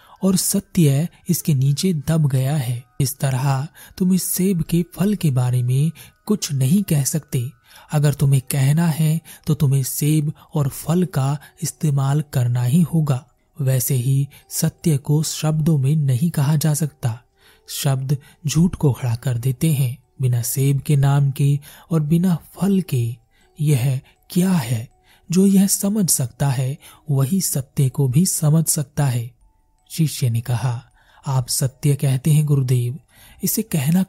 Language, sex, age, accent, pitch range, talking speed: Hindi, male, 30-49, native, 130-160 Hz, 150 wpm